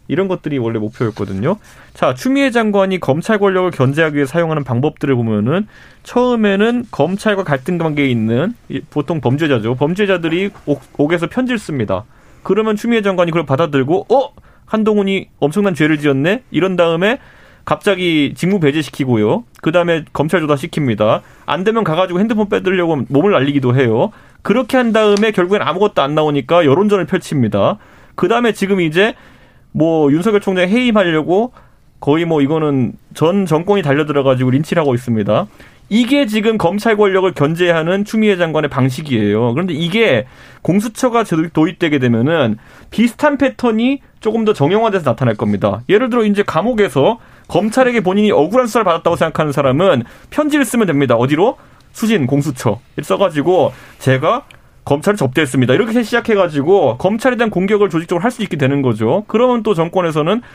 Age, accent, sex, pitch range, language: 30-49, native, male, 140-210 Hz, Korean